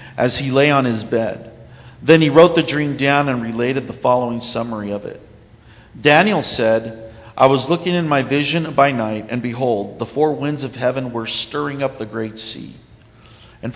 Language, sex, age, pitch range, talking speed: English, male, 50-69, 115-155 Hz, 190 wpm